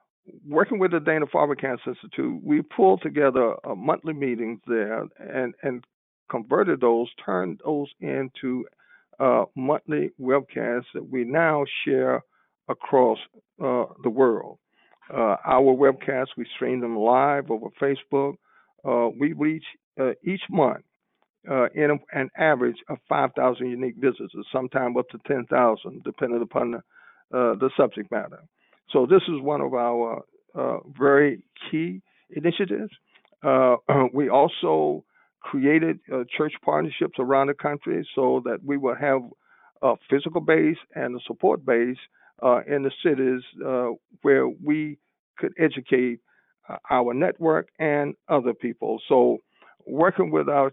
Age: 50-69